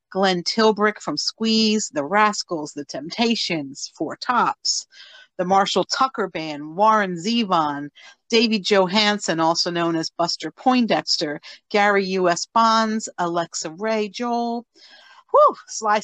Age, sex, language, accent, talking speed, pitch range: 50-69, female, English, American, 110 wpm, 180-230 Hz